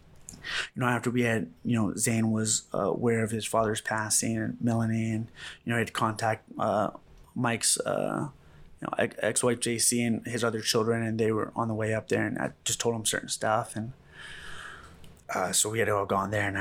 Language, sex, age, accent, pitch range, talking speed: English, male, 20-39, American, 100-115 Hz, 215 wpm